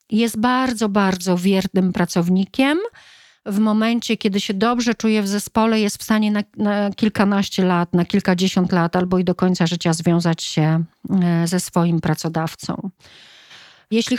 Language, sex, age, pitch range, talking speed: Polish, female, 40-59, 180-215 Hz, 145 wpm